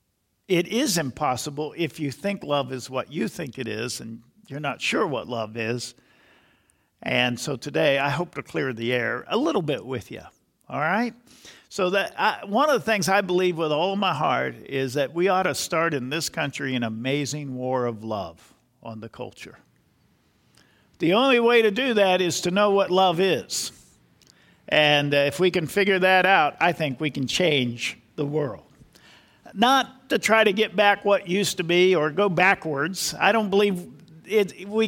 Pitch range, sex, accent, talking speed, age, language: 145-220 Hz, male, American, 190 wpm, 50-69, English